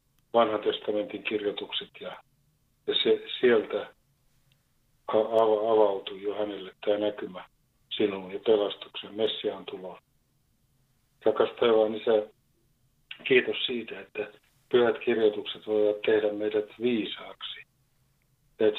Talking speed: 100 wpm